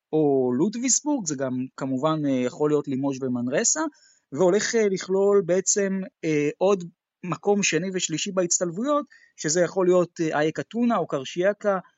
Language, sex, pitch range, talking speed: Hebrew, male, 145-205 Hz, 120 wpm